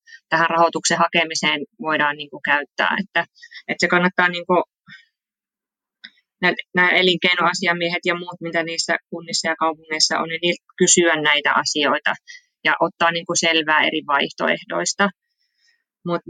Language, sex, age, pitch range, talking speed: Finnish, female, 20-39, 165-190 Hz, 120 wpm